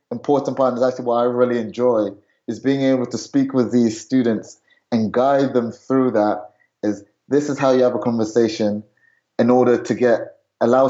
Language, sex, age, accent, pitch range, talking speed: English, male, 20-39, British, 110-125 Hz, 185 wpm